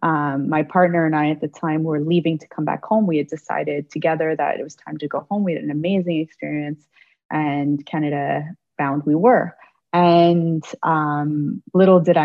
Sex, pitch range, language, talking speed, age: female, 150-185 Hz, English, 190 wpm, 20-39